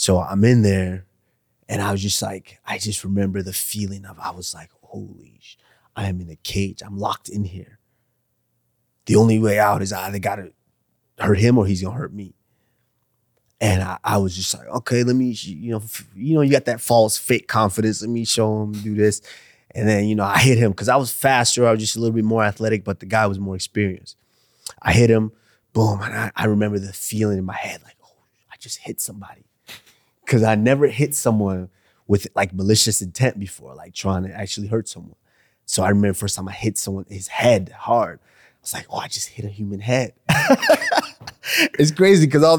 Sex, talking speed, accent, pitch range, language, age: male, 220 wpm, American, 100-120 Hz, English, 20-39